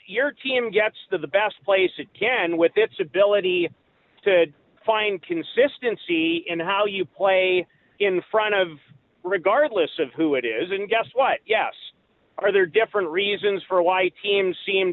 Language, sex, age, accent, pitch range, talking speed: English, male, 40-59, American, 175-225 Hz, 155 wpm